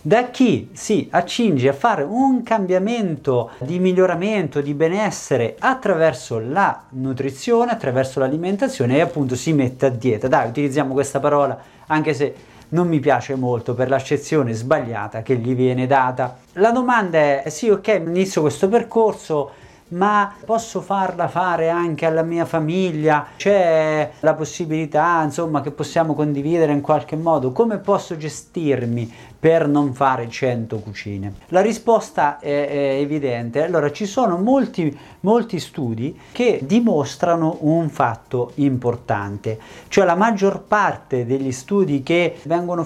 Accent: native